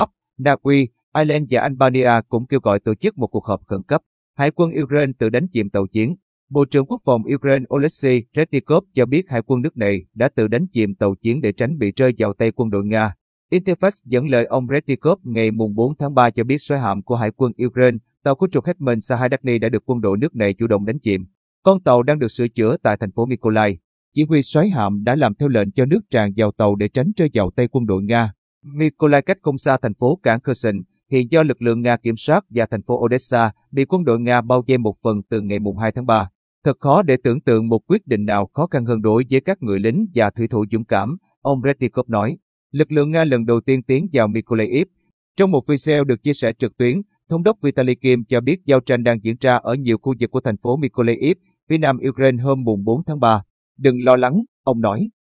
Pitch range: 110-140 Hz